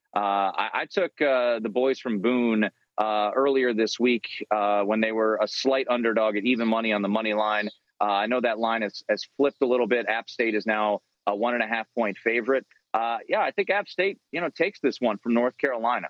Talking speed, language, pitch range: 235 wpm, English, 110-135 Hz